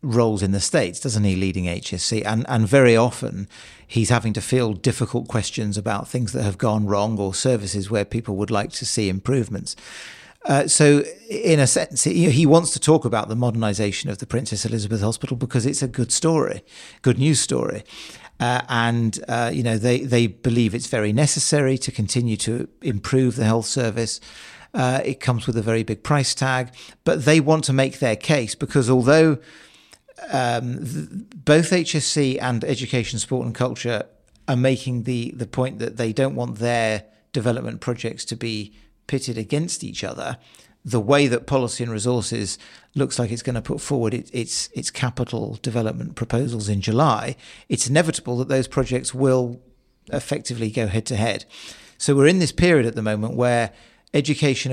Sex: male